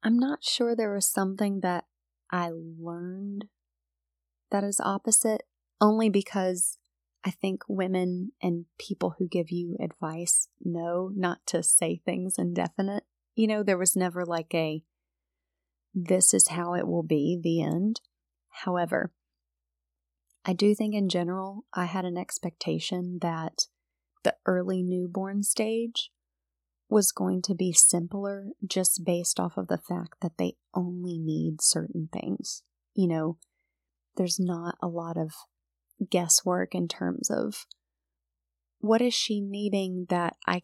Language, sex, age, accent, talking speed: English, female, 30-49, American, 135 wpm